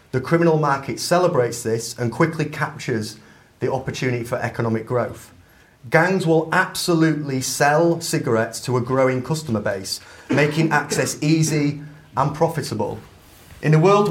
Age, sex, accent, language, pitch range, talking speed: 30-49, male, British, English, 125-155 Hz, 130 wpm